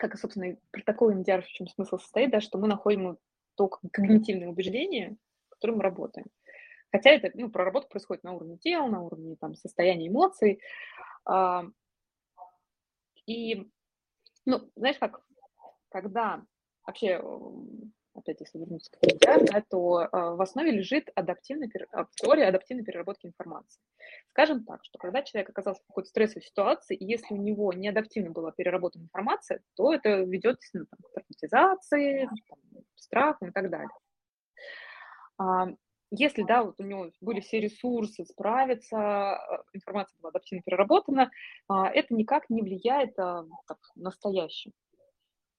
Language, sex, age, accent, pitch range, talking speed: Russian, female, 20-39, native, 185-255 Hz, 135 wpm